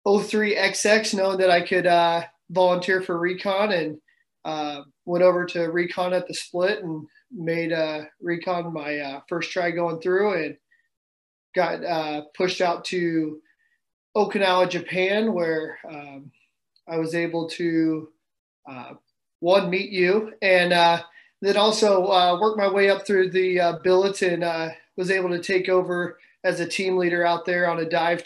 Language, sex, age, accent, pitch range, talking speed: English, male, 20-39, American, 160-185 Hz, 160 wpm